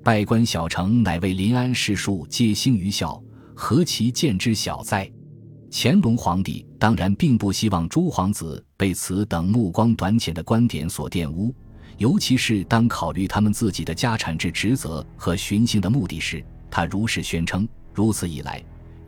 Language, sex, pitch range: Chinese, male, 85-115 Hz